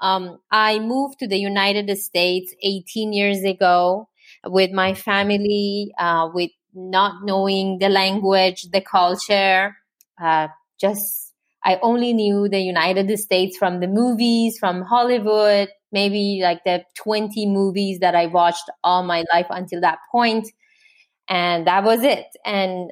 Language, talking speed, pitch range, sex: English, 140 wpm, 180-215 Hz, female